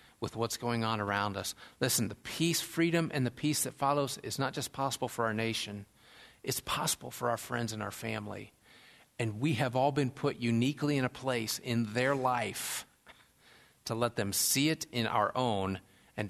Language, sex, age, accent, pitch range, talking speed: English, male, 50-69, American, 115-145 Hz, 190 wpm